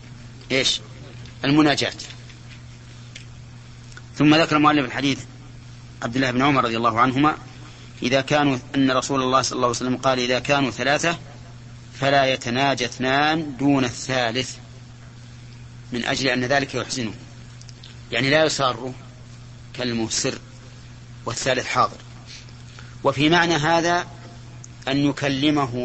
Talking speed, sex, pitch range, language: 110 wpm, male, 120-140 Hz, Arabic